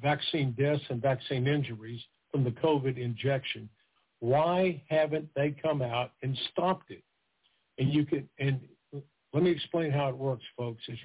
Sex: male